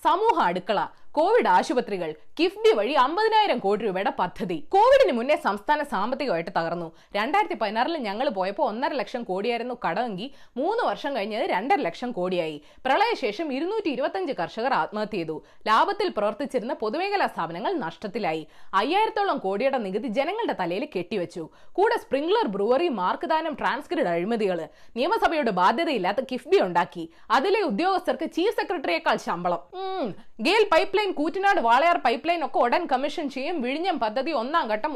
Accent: native